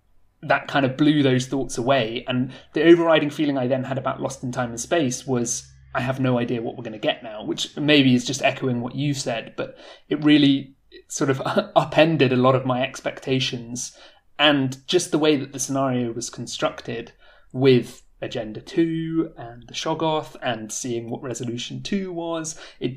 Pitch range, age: 120-140 Hz, 30-49